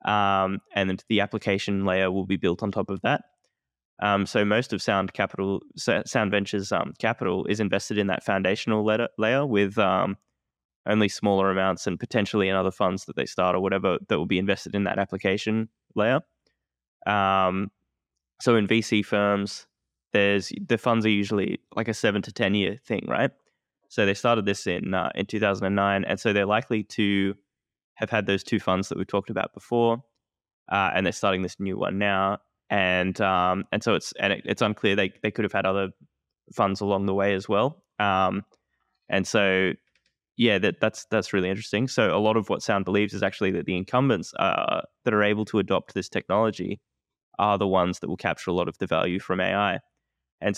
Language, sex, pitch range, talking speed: English, male, 95-105 Hz, 200 wpm